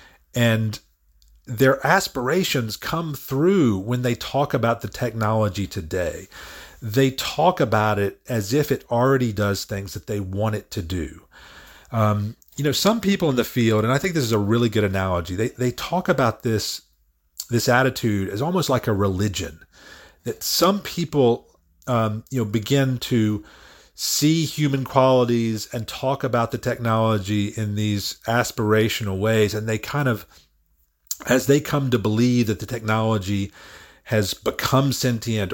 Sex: male